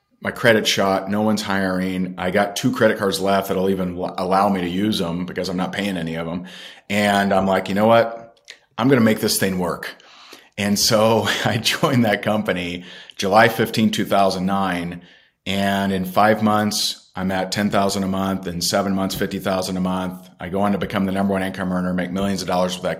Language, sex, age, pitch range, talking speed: English, male, 40-59, 95-110 Hz, 205 wpm